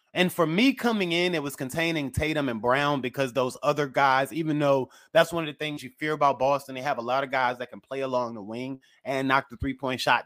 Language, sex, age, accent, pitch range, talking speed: English, male, 30-49, American, 135-165 Hz, 250 wpm